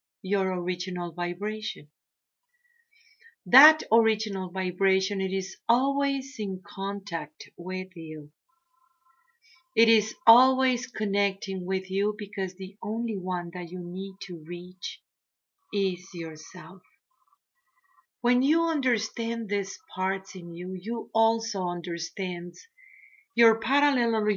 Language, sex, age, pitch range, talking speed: English, female, 50-69, 180-250 Hz, 105 wpm